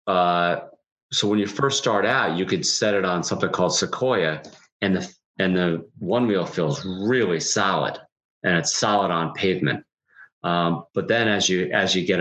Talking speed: 180 wpm